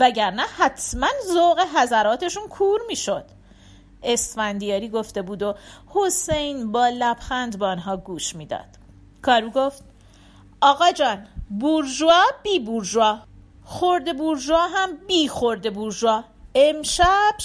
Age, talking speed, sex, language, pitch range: 40-59, 110 wpm, female, Persian, 180-280 Hz